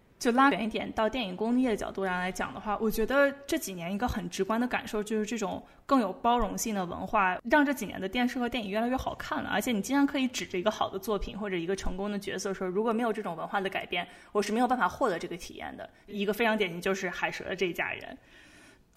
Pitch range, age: 200-275 Hz, 20-39